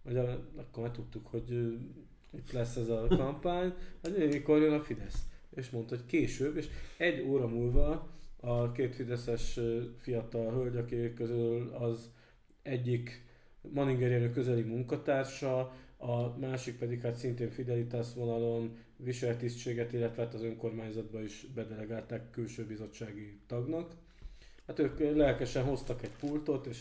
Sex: male